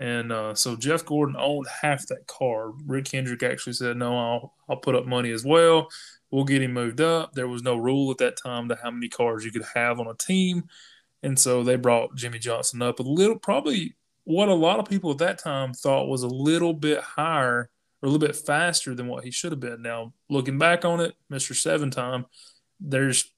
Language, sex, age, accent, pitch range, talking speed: English, male, 20-39, American, 125-155 Hz, 225 wpm